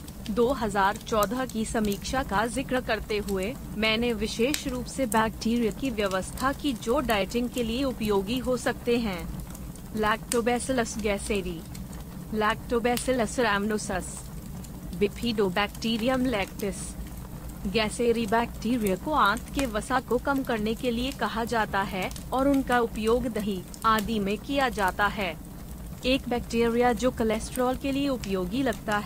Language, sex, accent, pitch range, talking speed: Hindi, female, native, 205-250 Hz, 120 wpm